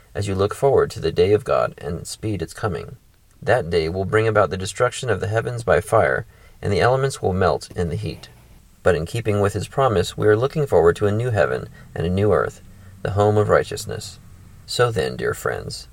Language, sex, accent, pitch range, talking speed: English, male, American, 100-115 Hz, 220 wpm